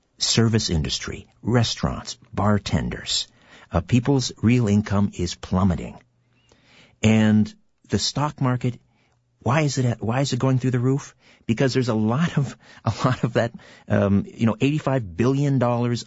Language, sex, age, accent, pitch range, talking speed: English, male, 50-69, American, 105-130 Hz, 150 wpm